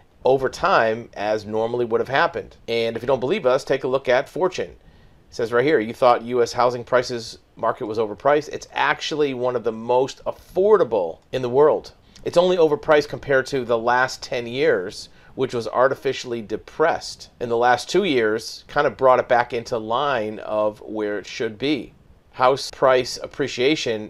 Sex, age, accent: male, 40-59, American